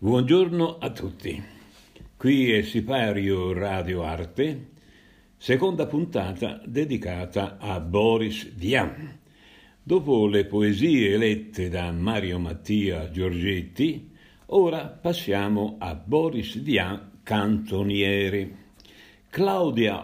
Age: 60-79